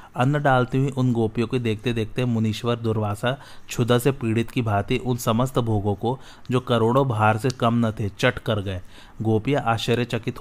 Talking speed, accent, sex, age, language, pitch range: 180 wpm, native, male, 30-49, Hindi, 110-125 Hz